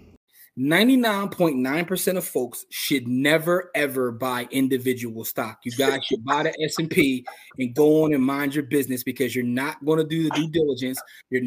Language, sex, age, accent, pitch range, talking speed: English, male, 30-49, American, 120-155 Hz, 190 wpm